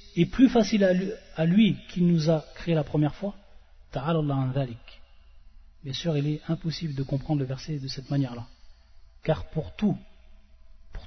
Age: 40-59